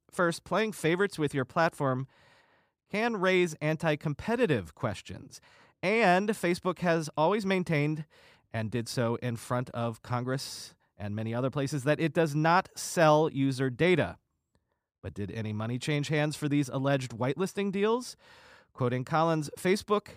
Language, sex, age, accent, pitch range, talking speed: English, male, 30-49, American, 125-165 Hz, 140 wpm